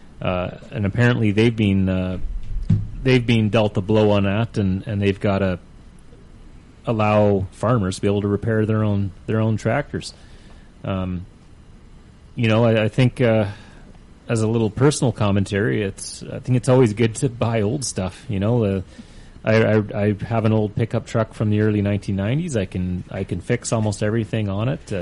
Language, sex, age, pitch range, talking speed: English, male, 30-49, 100-120 Hz, 185 wpm